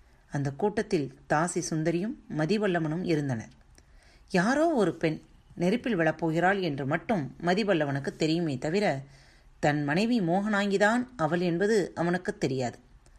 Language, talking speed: Tamil, 105 wpm